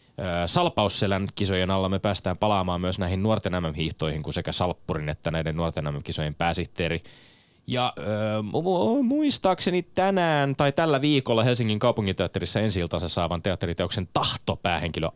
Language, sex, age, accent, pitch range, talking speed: Finnish, male, 20-39, native, 80-105 Hz, 120 wpm